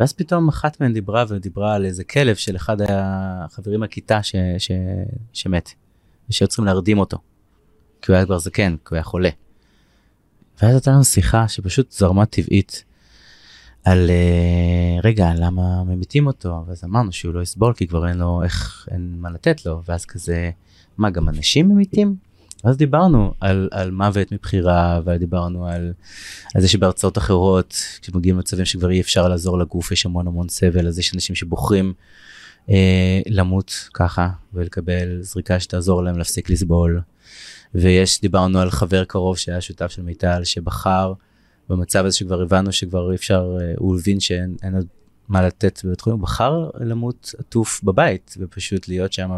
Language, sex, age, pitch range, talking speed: Hebrew, male, 30-49, 90-100 Hz, 155 wpm